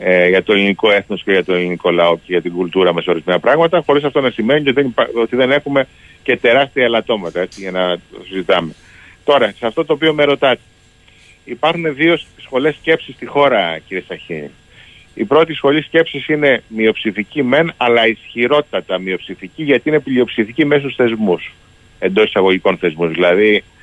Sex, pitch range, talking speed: male, 100-145 Hz, 165 wpm